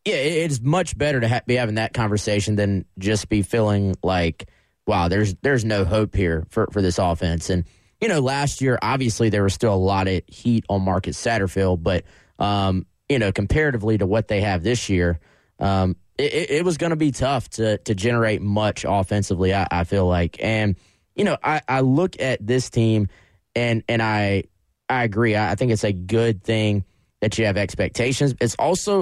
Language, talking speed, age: English, 195 wpm, 20-39